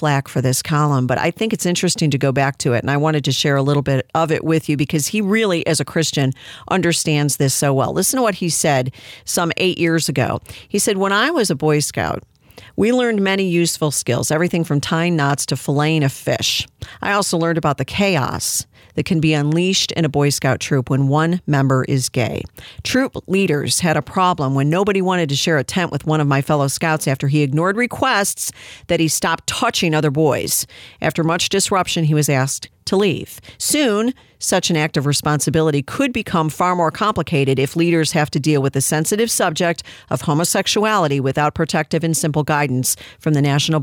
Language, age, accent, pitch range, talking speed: English, 50-69, American, 140-175 Hz, 205 wpm